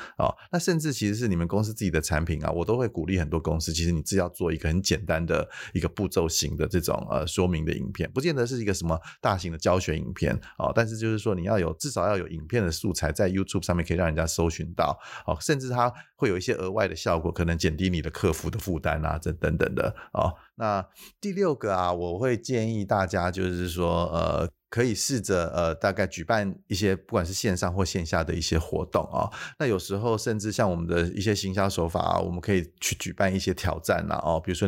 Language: Chinese